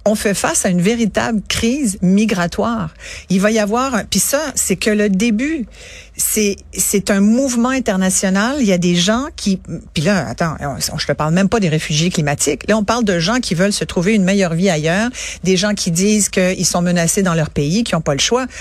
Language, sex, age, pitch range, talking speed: French, female, 50-69, 180-225 Hz, 225 wpm